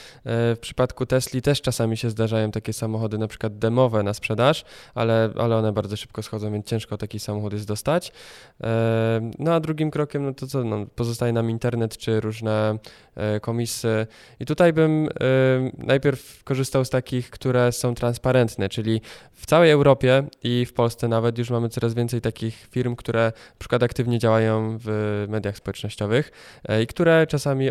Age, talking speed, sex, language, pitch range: 20-39, 160 wpm, male, Polish, 110-130 Hz